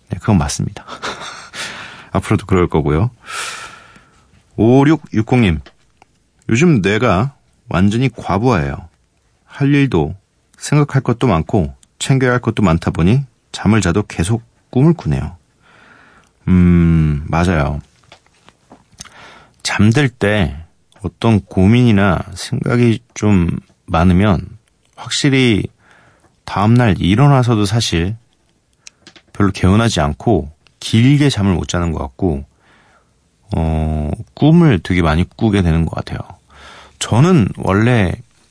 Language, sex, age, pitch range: Korean, male, 40-59, 85-120 Hz